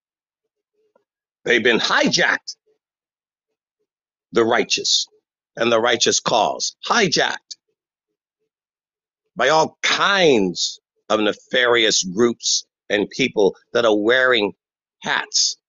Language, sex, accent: English, male, American